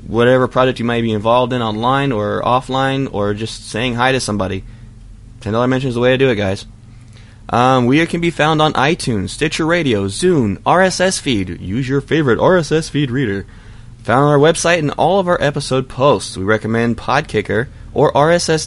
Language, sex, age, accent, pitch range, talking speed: English, male, 20-39, American, 105-130 Hz, 185 wpm